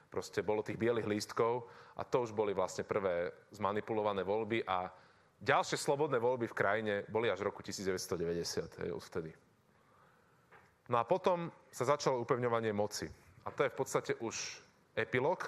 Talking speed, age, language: 155 wpm, 30-49, Slovak